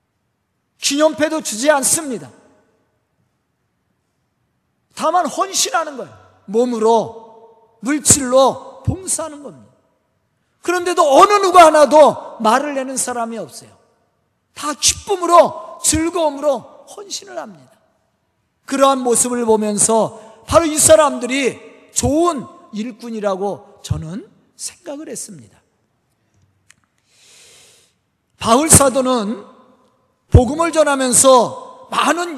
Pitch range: 225-300 Hz